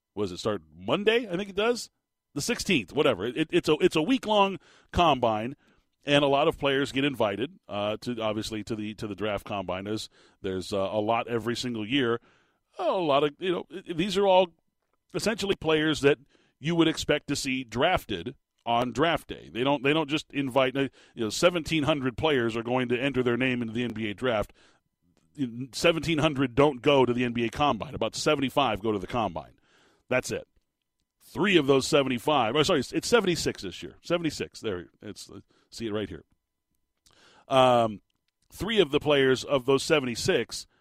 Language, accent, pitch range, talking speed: English, American, 115-150 Hz, 180 wpm